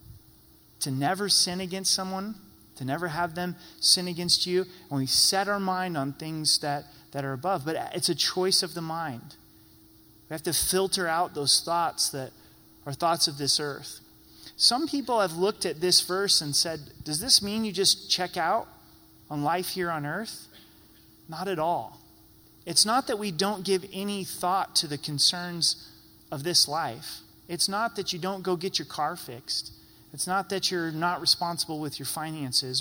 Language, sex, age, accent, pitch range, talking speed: English, male, 30-49, American, 140-185 Hz, 185 wpm